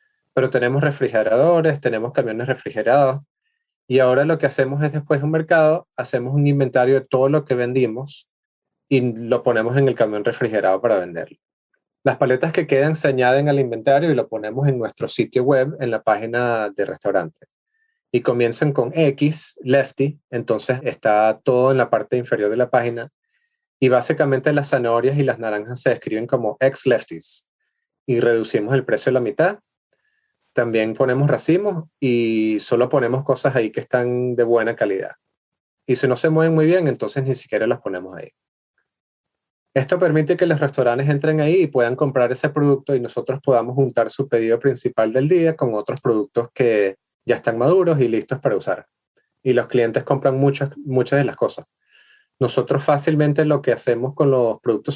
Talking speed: 175 wpm